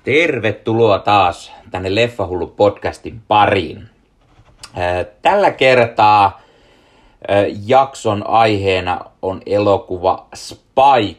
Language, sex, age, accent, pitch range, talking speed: Finnish, male, 30-49, native, 95-115 Hz, 65 wpm